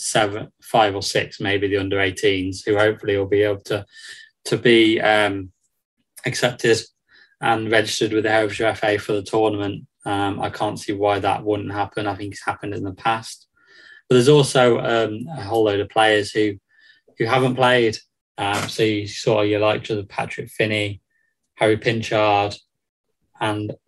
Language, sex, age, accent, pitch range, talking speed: English, male, 20-39, British, 105-125 Hz, 165 wpm